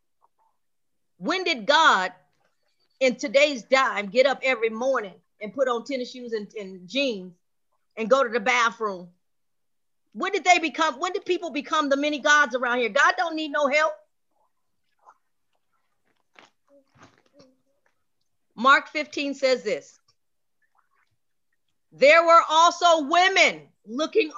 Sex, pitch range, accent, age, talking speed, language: female, 265-330 Hz, American, 40-59, 125 wpm, English